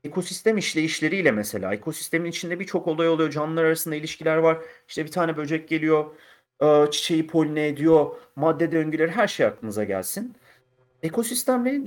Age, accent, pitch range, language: 40-59, native, 125-170 Hz, Turkish